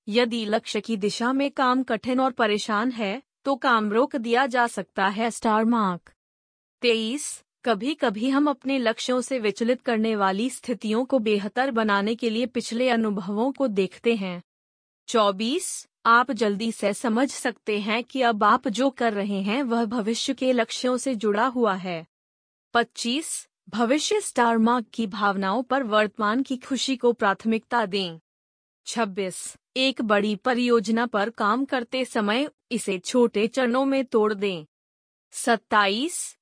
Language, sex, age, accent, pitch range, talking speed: Hindi, female, 20-39, native, 210-255 Hz, 150 wpm